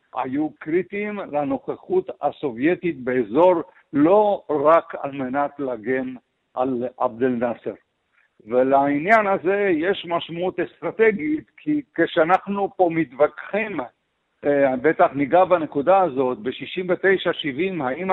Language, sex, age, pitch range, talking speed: Hebrew, male, 60-79, 145-185 Hz, 95 wpm